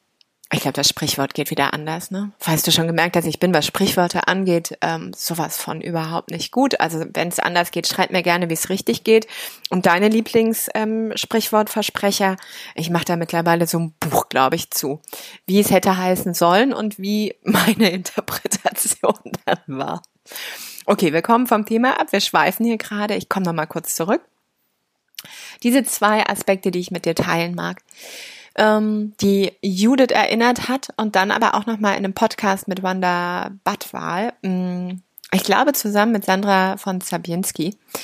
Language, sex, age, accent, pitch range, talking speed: German, female, 20-39, German, 170-215 Hz, 170 wpm